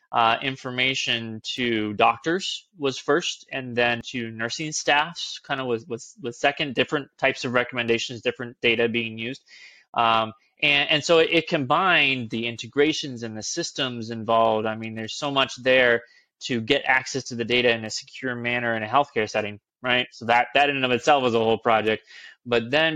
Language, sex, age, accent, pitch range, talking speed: English, male, 20-39, American, 115-140 Hz, 190 wpm